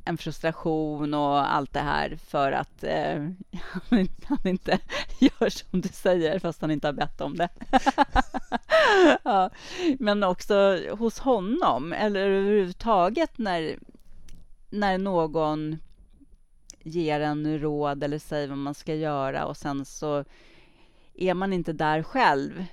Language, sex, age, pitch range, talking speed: Swedish, female, 30-49, 155-215 Hz, 125 wpm